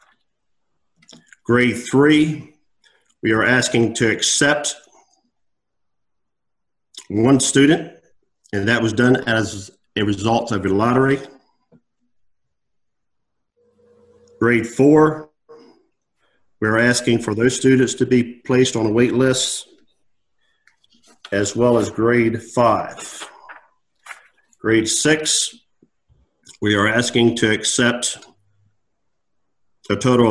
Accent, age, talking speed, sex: American, 50-69, 90 wpm, male